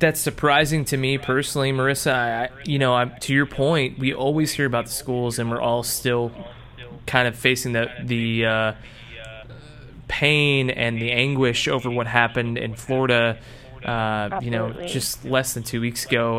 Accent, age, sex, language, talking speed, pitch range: American, 20-39, male, English, 170 wpm, 120-145 Hz